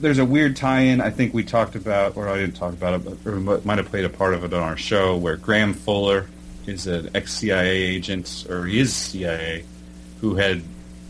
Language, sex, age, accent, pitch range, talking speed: English, male, 30-49, American, 85-105 Hz, 215 wpm